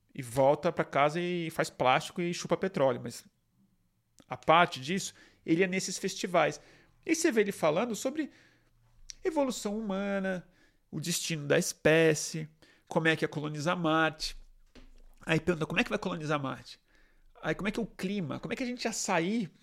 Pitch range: 155-190 Hz